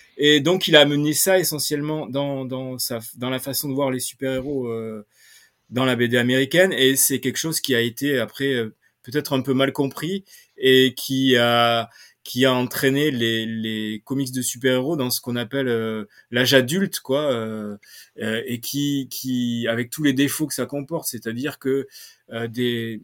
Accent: French